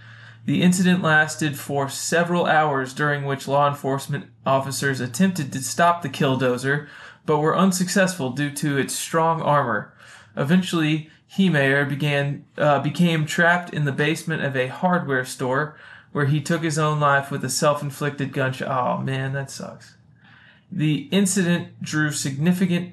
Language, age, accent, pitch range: English, 20-39, American, 130-155 Hz